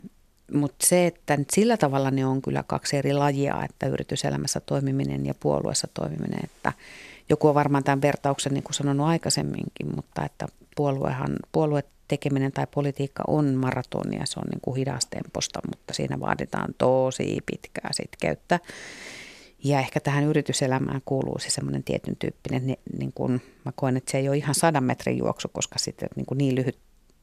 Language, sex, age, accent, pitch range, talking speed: Finnish, female, 50-69, native, 130-145 Hz, 160 wpm